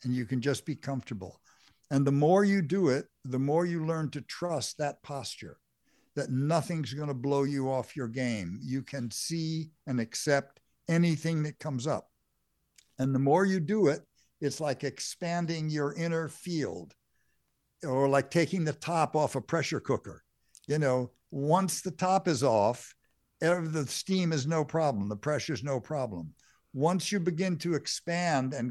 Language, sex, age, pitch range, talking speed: English, male, 60-79, 135-165 Hz, 165 wpm